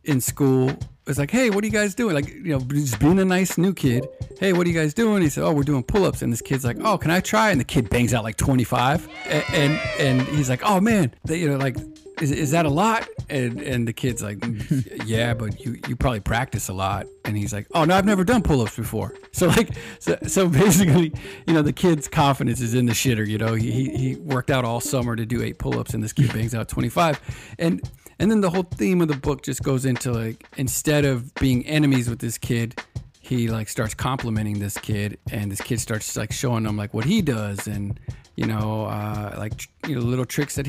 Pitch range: 115-155 Hz